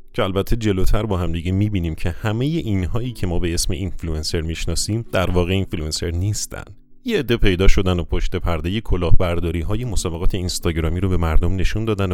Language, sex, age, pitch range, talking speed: Persian, male, 30-49, 85-105 Hz, 175 wpm